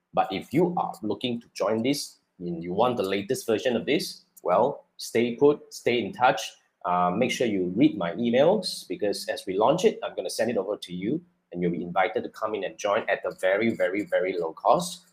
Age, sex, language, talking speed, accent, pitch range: 30-49, male, English, 230 wpm, Malaysian, 100-150 Hz